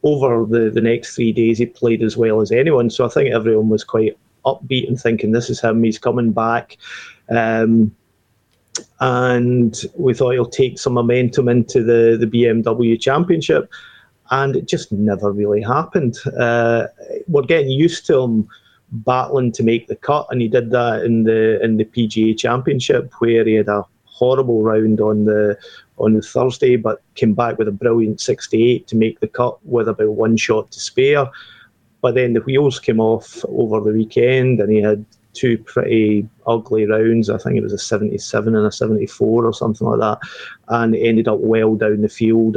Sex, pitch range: male, 110-120 Hz